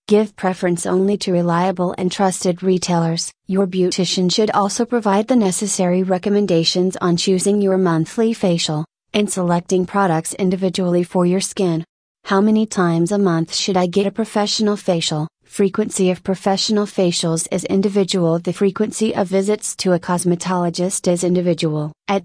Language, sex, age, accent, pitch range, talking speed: English, female, 30-49, American, 175-205 Hz, 150 wpm